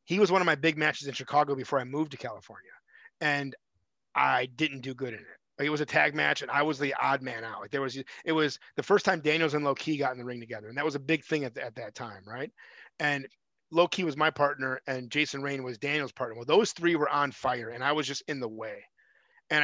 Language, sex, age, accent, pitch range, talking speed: English, male, 30-49, American, 135-165 Hz, 265 wpm